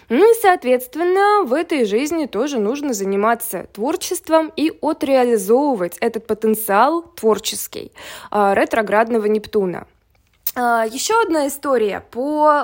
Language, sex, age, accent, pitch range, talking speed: Russian, female, 20-39, native, 215-310 Hz, 100 wpm